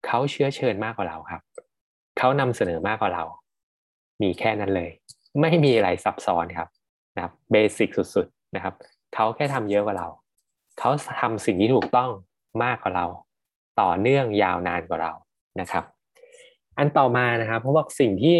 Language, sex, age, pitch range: Thai, male, 20-39, 105-145 Hz